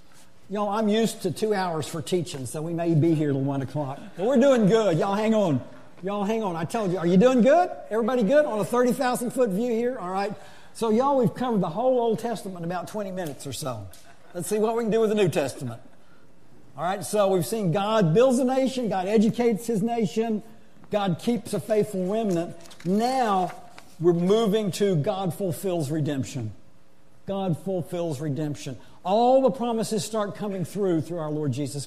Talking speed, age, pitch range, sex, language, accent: 200 wpm, 50-69, 150-215 Hz, male, English, American